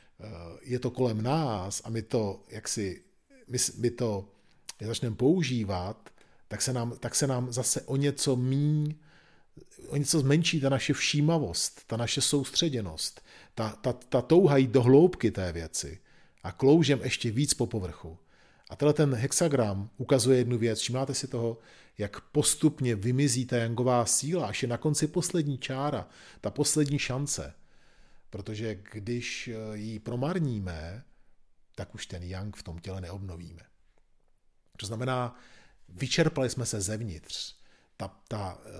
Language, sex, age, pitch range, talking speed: Czech, male, 40-59, 105-135 Hz, 140 wpm